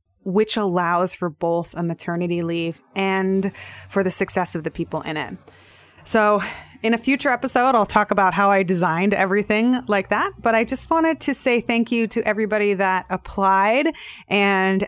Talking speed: 175 wpm